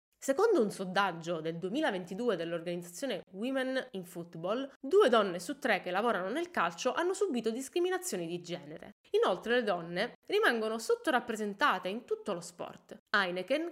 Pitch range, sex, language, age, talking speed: 195-285 Hz, female, Italian, 20-39, 140 wpm